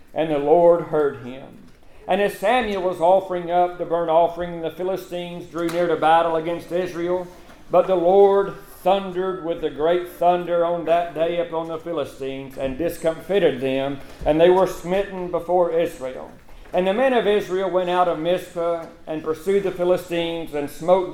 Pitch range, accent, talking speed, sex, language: 160-185 Hz, American, 170 wpm, male, English